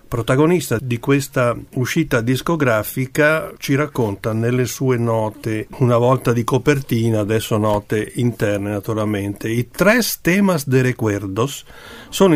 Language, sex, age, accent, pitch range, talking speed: Italian, male, 50-69, native, 110-140 Hz, 115 wpm